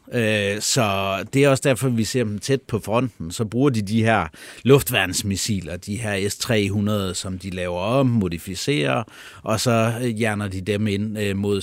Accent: native